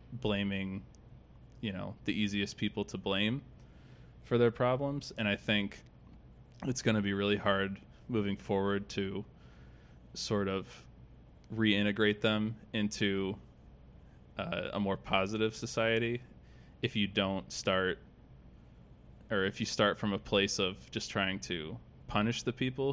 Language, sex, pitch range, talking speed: English, male, 95-115 Hz, 135 wpm